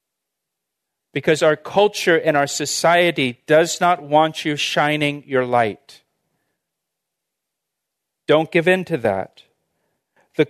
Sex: male